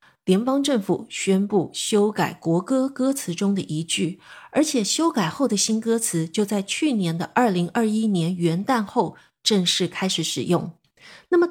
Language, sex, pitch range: Chinese, female, 175-240 Hz